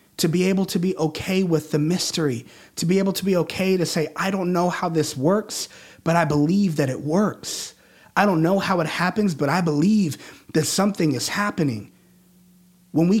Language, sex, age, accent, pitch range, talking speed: English, male, 30-49, American, 150-185 Hz, 200 wpm